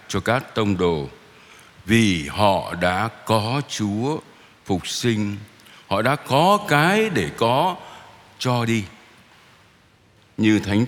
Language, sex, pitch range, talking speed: Vietnamese, male, 95-120 Hz, 115 wpm